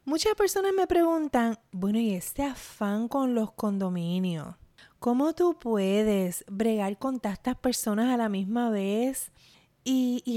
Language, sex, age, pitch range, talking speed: Spanish, female, 30-49, 195-255 Hz, 140 wpm